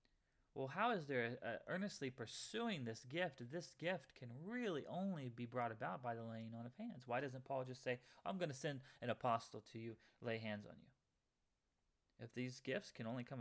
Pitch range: 120-165 Hz